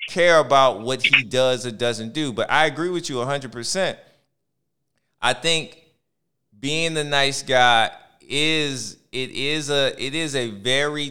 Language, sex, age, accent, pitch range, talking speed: English, male, 30-49, American, 120-165 Hz, 160 wpm